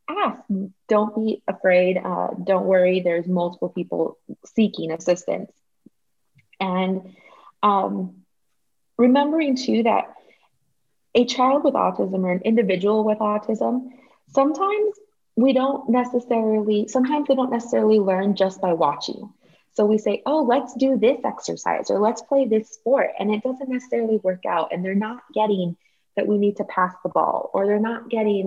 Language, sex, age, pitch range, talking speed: English, female, 20-39, 195-255 Hz, 150 wpm